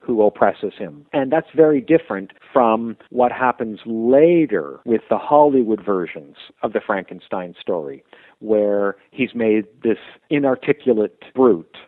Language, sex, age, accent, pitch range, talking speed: English, male, 50-69, American, 105-145 Hz, 125 wpm